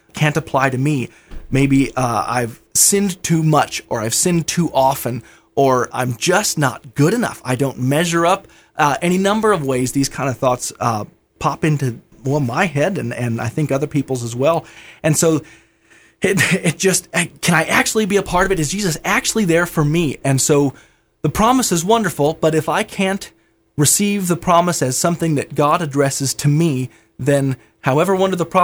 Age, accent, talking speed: 20-39, American, 185 wpm